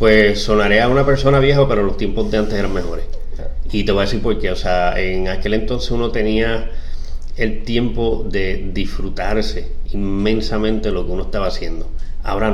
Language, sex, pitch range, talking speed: Spanish, male, 90-110 Hz, 180 wpm